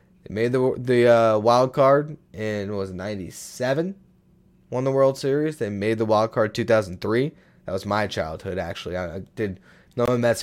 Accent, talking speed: American, 180 wpm